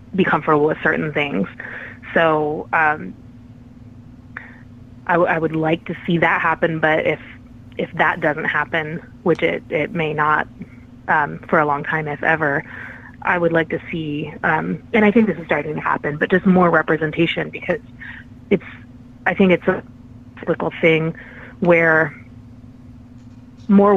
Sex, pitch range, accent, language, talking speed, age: female, 125-170 Hz, American, English, 155 wpm, 30-49